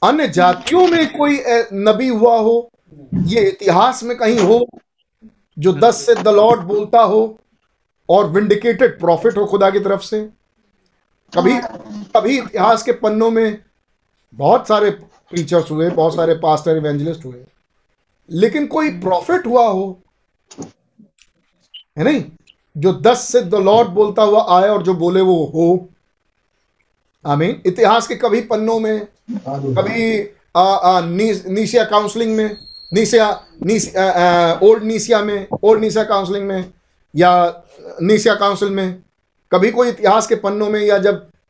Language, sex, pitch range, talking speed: Hindi, male, 175-225 Hz, 130 wpm